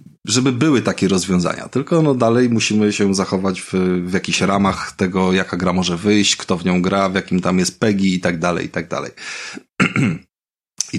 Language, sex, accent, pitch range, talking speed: Polish, male, native, 90-105 Hz, 190 wpm